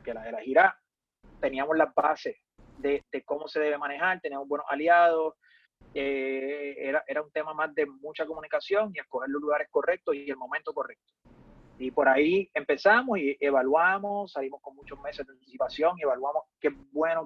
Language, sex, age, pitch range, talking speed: English, male, 30-49, 140-185 Hz, 175 wpm